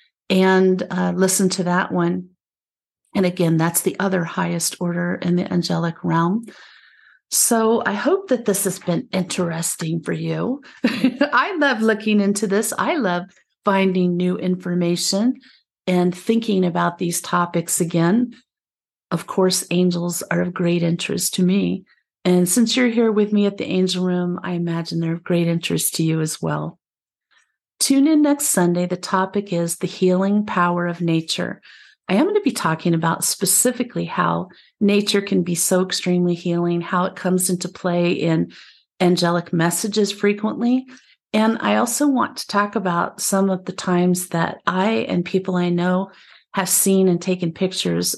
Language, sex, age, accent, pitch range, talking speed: English, female, 50-69, American, 175-200 Hz, 160 wpm